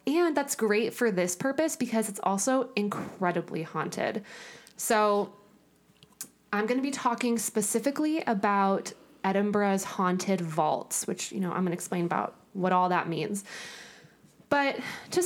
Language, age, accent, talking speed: English, 20-39, American, 140 wpm